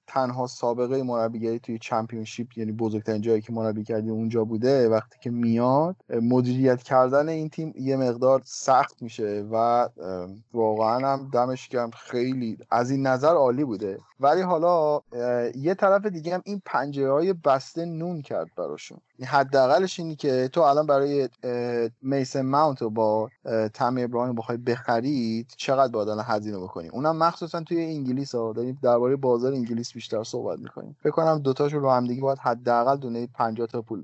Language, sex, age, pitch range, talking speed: Persian, male, 30-49, 120-150 Hz, 160 wpm